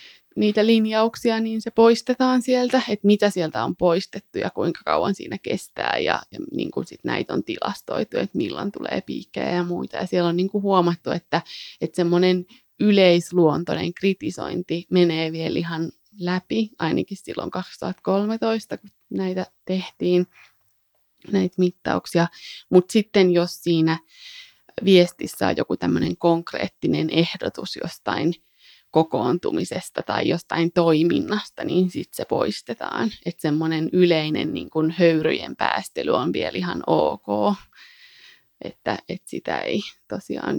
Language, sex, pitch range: Finnish, female, 170-205 Hz